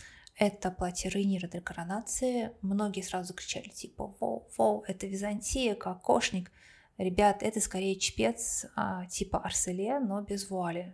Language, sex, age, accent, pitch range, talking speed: Russian, female, 20-39, native, 180-210 Hz, 125 wpm